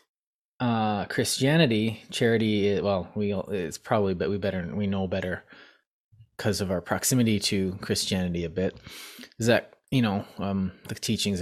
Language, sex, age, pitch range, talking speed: English, male, 20-39, 95-115 Hz, 140 wpm